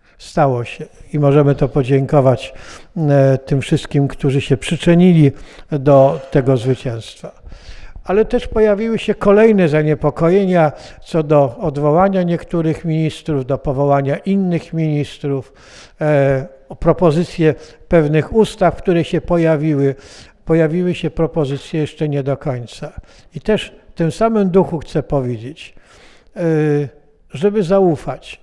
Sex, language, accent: male, Polish, native